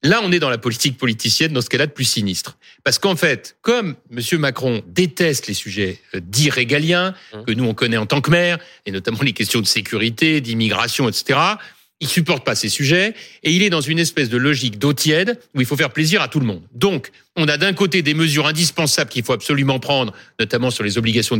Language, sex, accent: French, male, French